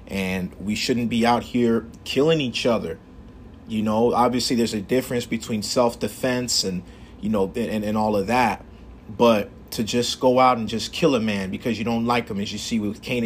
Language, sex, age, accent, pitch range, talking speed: English, male, 30-49, American, 110-125 Hz, 205 wpm